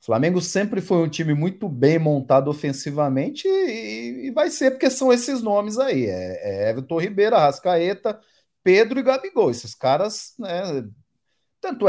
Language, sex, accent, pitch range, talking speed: Portuguese, male, Brazilian, 140-210 Hz, 160 wpm